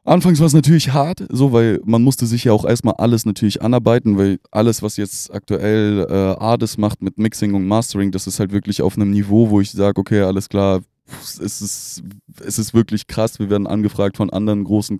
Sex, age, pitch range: male, 20-39, 100-110 Hz